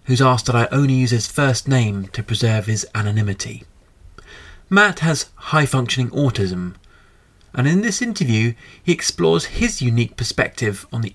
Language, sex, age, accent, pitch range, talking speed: English, male, 30-49, British, 105-145 Hz, 150 wpm